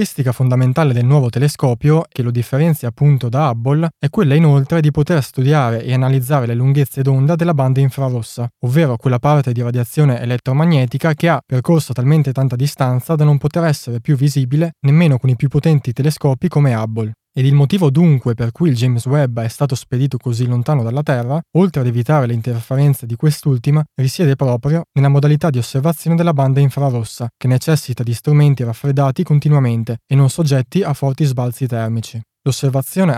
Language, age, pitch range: Italian, 20-39, 125-150 Hz